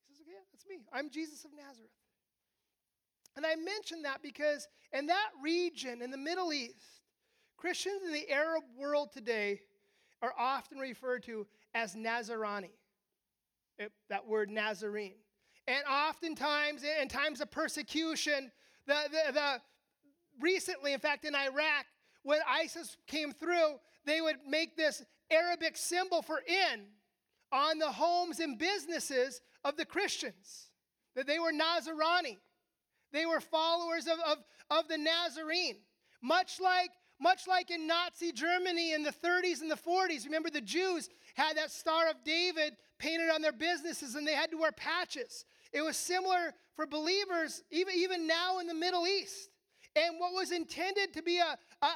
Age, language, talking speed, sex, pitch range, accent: 30-49, English, 150 wpm, male, 285-345 Hz, American